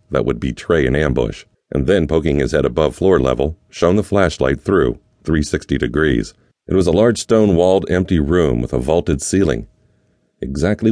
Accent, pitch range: American, 70-90 Hz